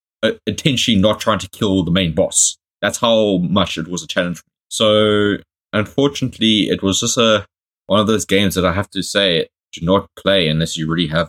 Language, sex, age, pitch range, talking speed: English, male, 20-39, 85-105 Hz, 195 wpm